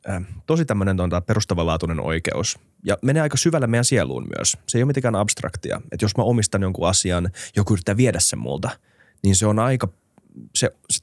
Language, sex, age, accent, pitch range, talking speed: Finnish, male, 20-39, native, 90-120 Hz, 180 wpm